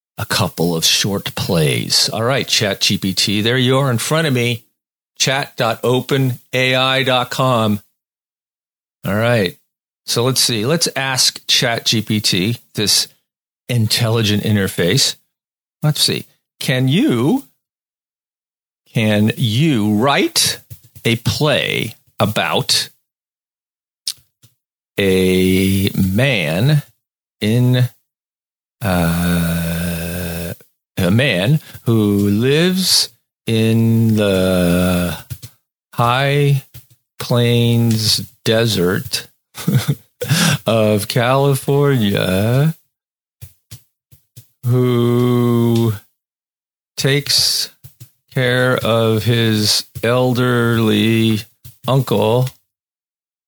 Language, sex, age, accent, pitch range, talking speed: English, male, 50-69, American, 105-125 Hz, 70 wpm